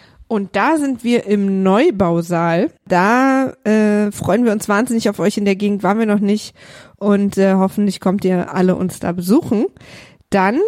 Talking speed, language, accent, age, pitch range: 175 wpm, German, German, 20-39, 195-240 Hz